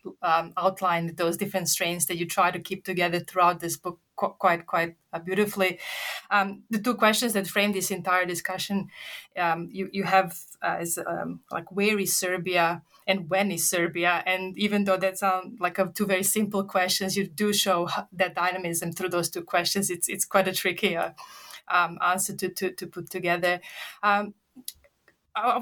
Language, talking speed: English, 185 wpm